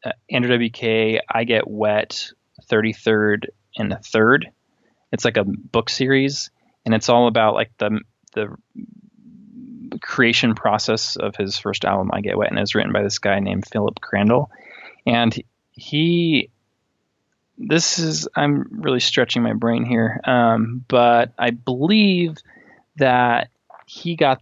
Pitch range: 110-135 Hz